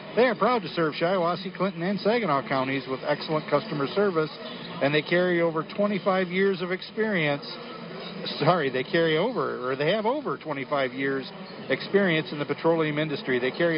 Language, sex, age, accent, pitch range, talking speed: English, male, 50-69, American, 145-180 Hz, 170 wpm